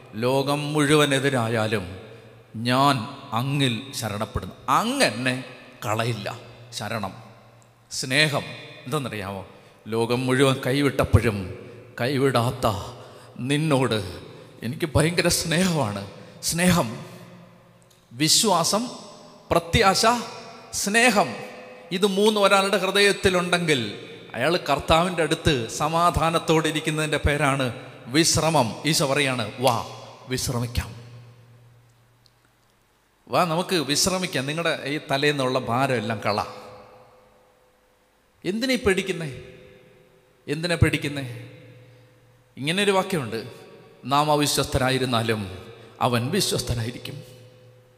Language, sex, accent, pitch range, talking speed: Malayalam, male, native, 120-165 Hz, 70 wpm